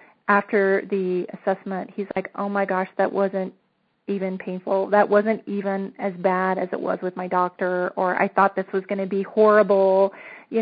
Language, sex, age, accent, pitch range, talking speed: English, female, 30-49, American, 190-220 Hz, 185 wpm